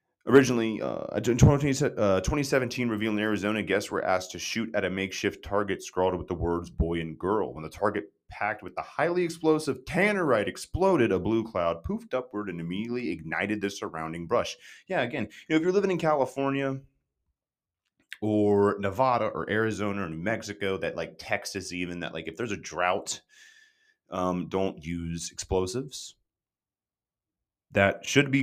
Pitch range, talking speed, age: 85-125 Hz, 160 wpm, 30-49